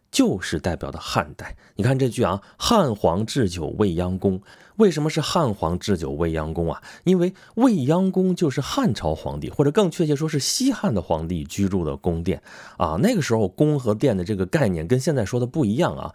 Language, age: Chinese, 30-49